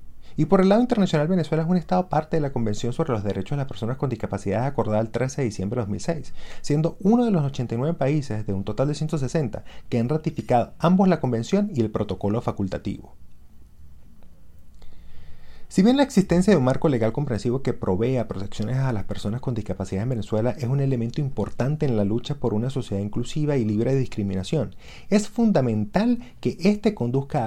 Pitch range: 105-160 Hz